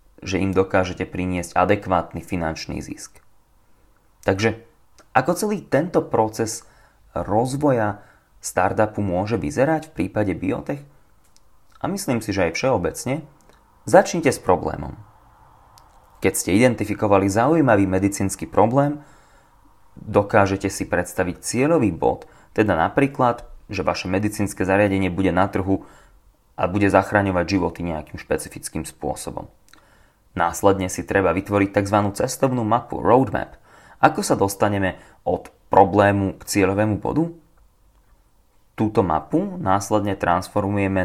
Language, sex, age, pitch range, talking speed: Slovak, male, 30-49, 90-115 Hz, 110 wpm